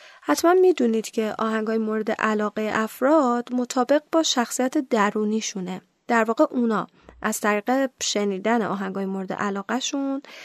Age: 10-29